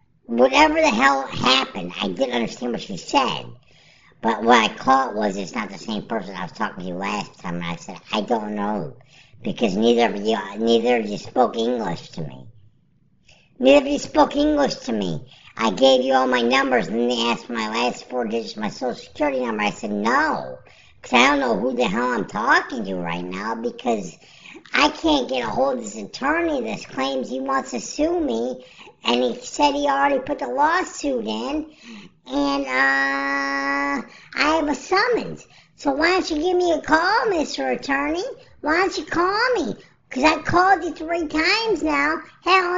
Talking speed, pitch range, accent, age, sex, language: 195 wpm, 225-320 Hz, American, 50-69, male, English